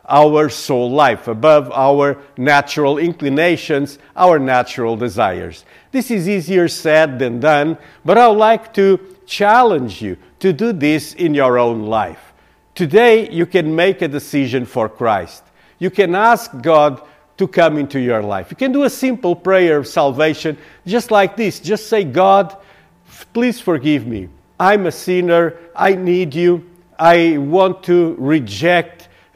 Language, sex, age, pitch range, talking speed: English, male, 50-69, 140-185 Hz, 150 wpm